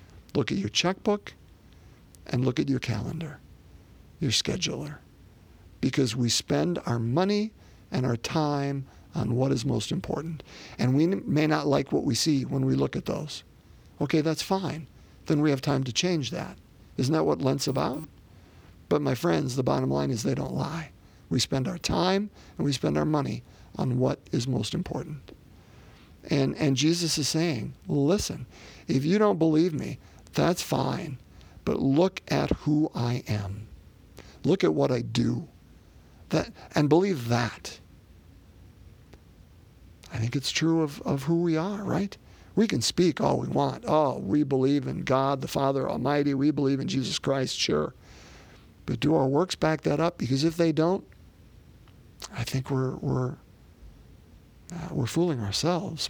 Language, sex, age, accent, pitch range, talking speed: English, male, 50-69, American, 115-160 Hz, 165 wpm